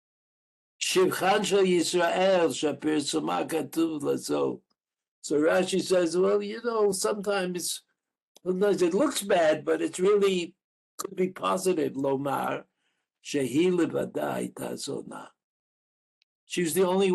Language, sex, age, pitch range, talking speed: English, male, 60-79, 150-195 Hz, 80 wpm